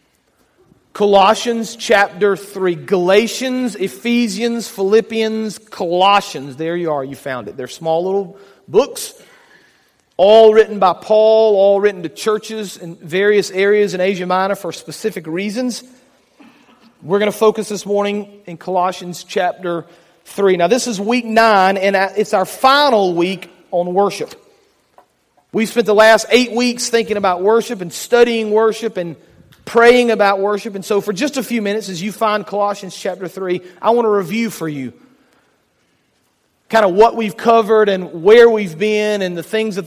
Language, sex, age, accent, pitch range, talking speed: English, male, 40-59, American, 185-225 Hz, 155 wpm